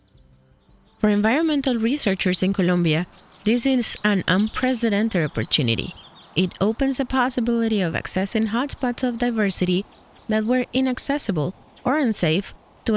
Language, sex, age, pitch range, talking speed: English, female, 30-49, 185-235 Hz, 115 wpm